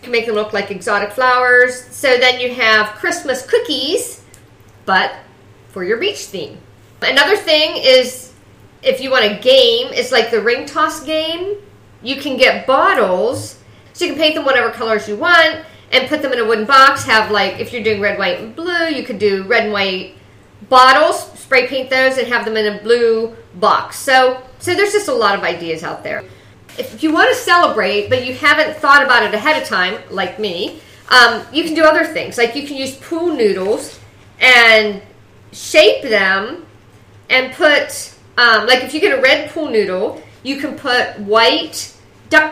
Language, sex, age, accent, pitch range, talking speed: English, female, 50-69, American, 220-310 Hz, 190 wpm